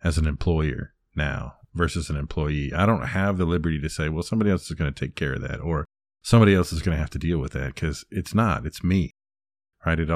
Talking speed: 250 wpm